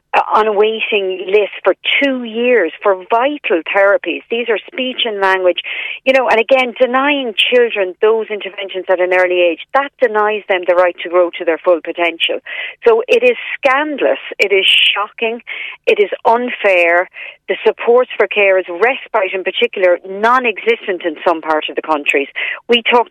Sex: female